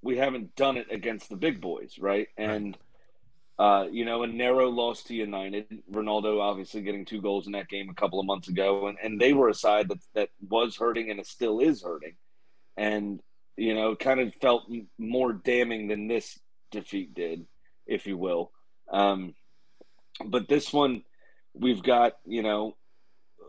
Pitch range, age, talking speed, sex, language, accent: 105-130 Hz, 30-49, 175 wpm, male, English, American